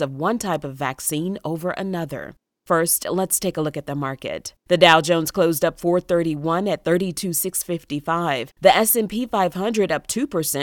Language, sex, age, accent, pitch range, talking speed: English, female, 30-49, American, 150-180 Hz, 170 wpm